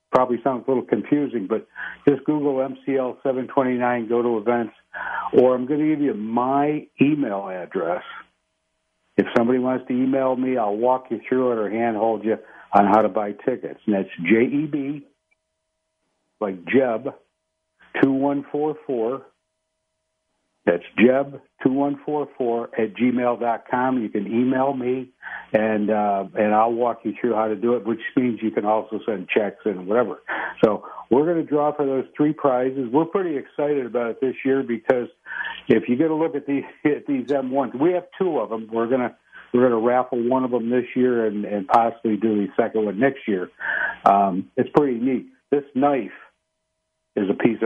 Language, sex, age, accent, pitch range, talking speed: English, male, 60-79, American, 115-140 Hz, 175 wpm